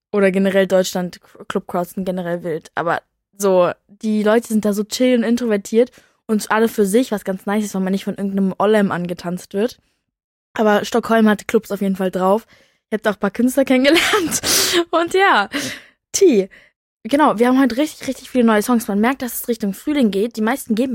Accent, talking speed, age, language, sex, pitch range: German, 200 wpm, 20-39, German, female, 195-235 Hz